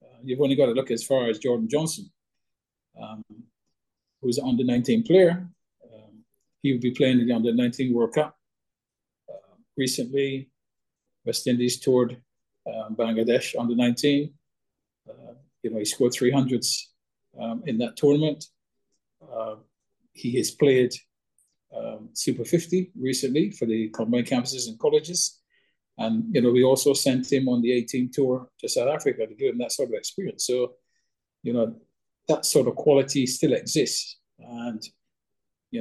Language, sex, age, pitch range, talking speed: English, male, 40-59, 120-155 Hz, 155 wpm